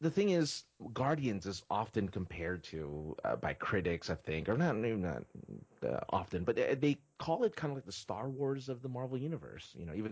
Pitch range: 90-140 Hz